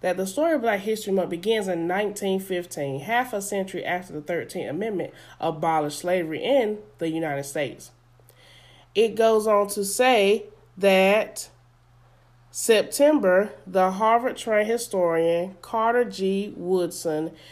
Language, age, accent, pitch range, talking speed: English, 30-49, American, 165-225 Hz, 125 wpm